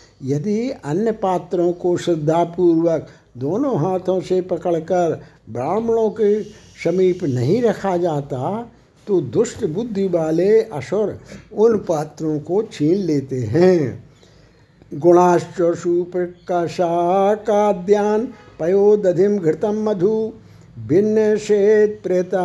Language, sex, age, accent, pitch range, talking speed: Hindi, male, 60-79, native, 155-200 Hz, 95 wpm